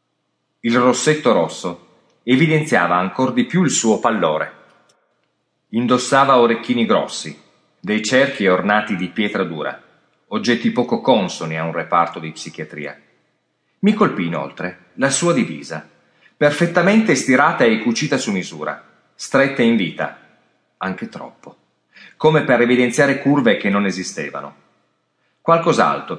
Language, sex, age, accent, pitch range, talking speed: Italian, male, 40-59, native, 90-145 Hz, 120 wpm